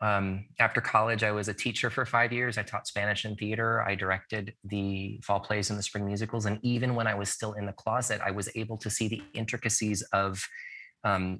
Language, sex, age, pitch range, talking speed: English, male, 20-39, 95-115 Hz, 220 wpm